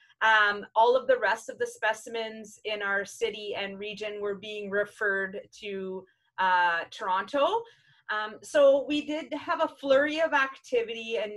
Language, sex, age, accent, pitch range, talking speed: English, female, 30-49, American, 210-295 Hz, 155 wpm